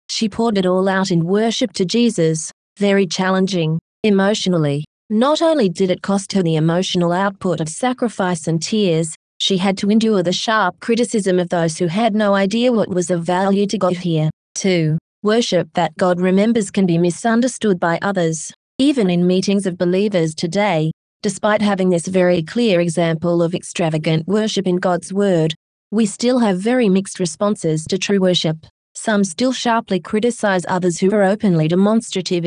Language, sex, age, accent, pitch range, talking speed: English, female, 30-49, Australian, 175-210 Hz, 170 wpm